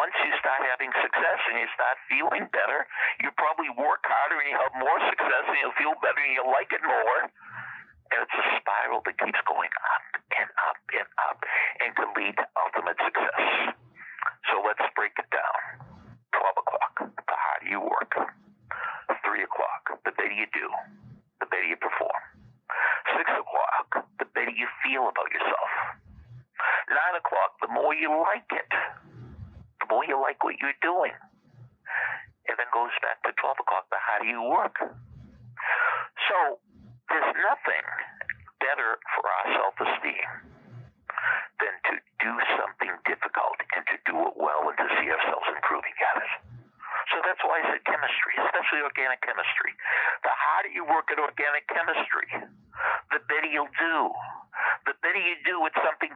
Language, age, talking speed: English, 60-79, 160 wpm